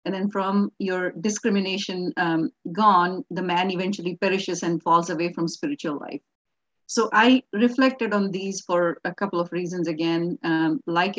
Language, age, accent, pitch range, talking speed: English, 70-89, Indian, 175-215 Hz, 160 wpm